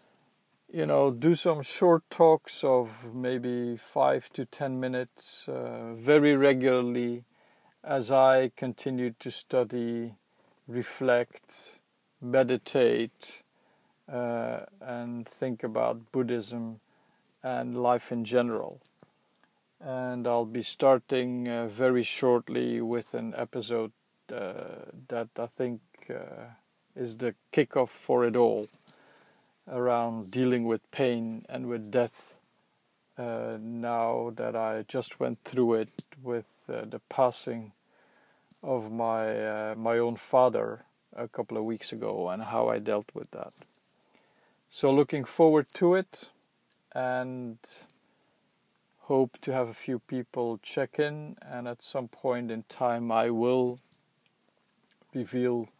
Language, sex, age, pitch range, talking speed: English, male, 50-69, 115-130 Hz, 120 wpm